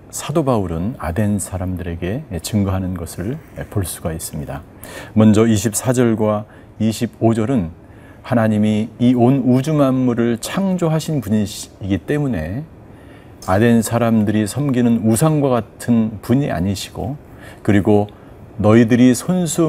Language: Korean